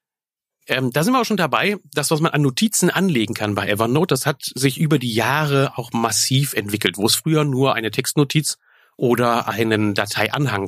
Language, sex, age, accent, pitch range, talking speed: German, male, 40-59, German, 120-155 Hz, 190 wpm